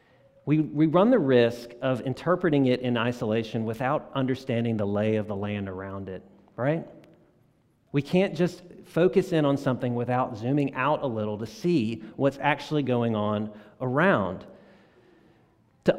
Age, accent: 40-59, American